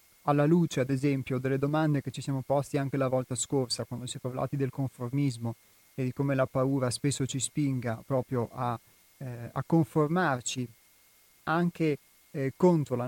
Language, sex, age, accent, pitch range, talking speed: Italian, male, 30-49, native, 125-145 Hz, 170 wpm